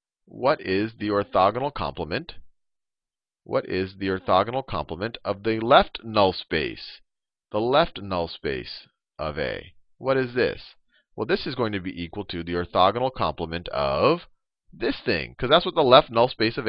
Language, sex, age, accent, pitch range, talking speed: English, male, 40-59, American, 95-145 Hz, 165 wpm